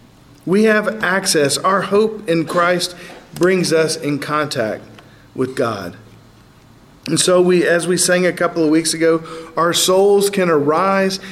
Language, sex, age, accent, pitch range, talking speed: English, male, 50-69, American, 140-165 Hz, 150 wpm